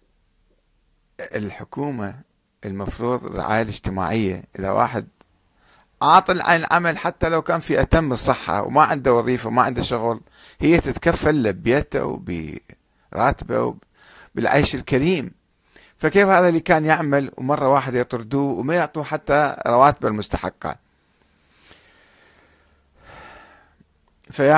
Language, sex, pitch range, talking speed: Arabic, male, 105-140 Hz, 100 wpm